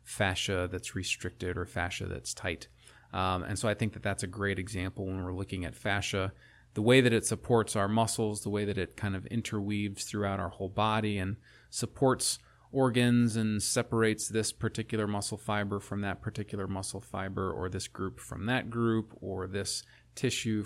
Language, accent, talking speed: English, American, 185 wpm